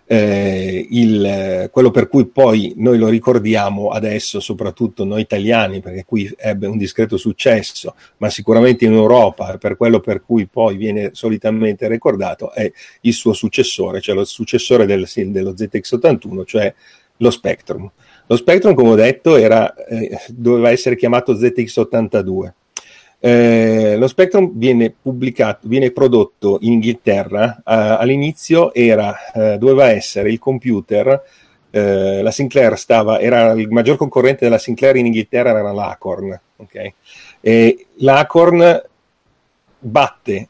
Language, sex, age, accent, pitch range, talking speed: Italian, male, 40-59, native, 110-125 Hz, 130 wpm